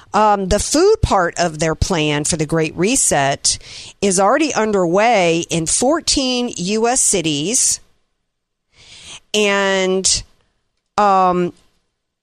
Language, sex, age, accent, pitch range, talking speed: English, female, 50-69, American, 165-210 Hz, 100 wpm